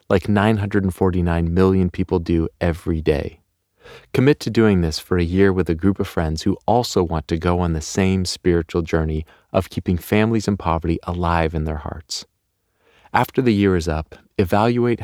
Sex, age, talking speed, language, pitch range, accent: male, 30-49, 175 wpm, English, 85-105 Hz, American